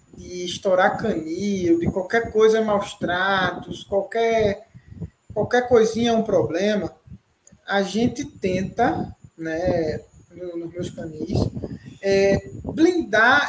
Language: Portuguese